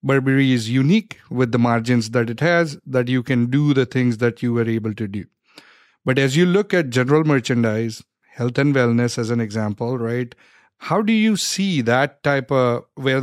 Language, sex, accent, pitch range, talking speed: English, male, Indian, 125-145 Hz, 195 wpm